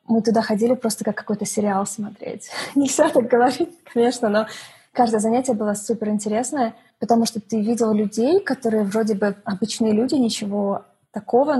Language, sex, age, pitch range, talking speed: Russian, female, 20-39, 220-245 Hz, 155 wpm